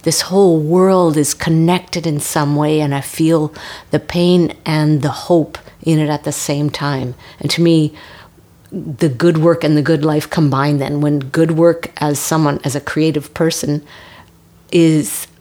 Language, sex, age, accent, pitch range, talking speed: English, female, 50-69, American, 145-160 Hz, 170 wpm